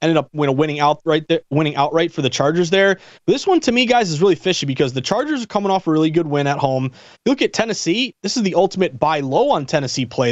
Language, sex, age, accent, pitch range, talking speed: English, male, 30-49, American, 150-200 Hz, 240 wpm